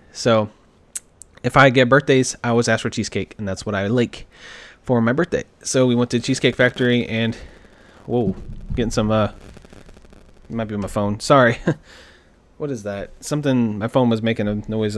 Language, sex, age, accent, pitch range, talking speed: English, male, 20-39, American, 115-140 Hz, 180 wpm